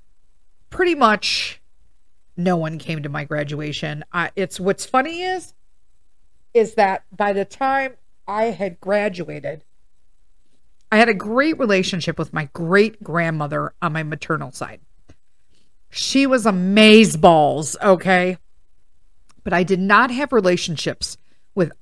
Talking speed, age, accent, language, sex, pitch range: 125 wpm, 50-69, American, English, female, 160-235 Hz